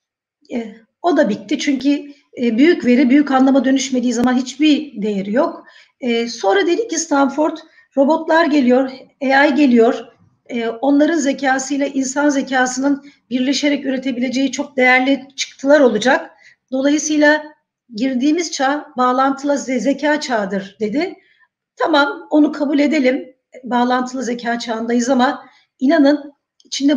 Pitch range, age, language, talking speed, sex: 240-290 Hz, 50-69, Turkish, 105 wpm, female